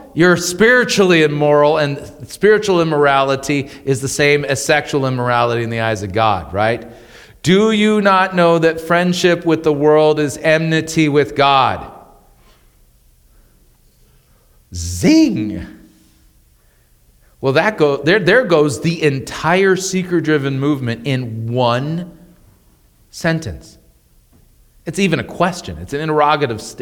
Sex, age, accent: male, 40-59, American